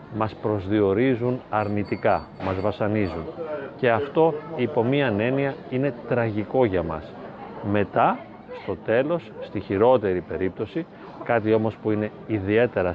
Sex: male